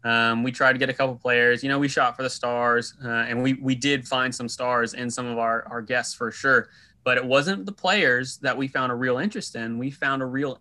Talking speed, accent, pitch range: 270 wpm, American, 120-145 Hz